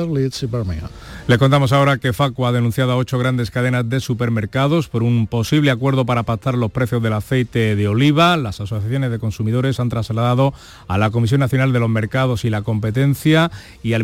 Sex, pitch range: male, 110-135 Hz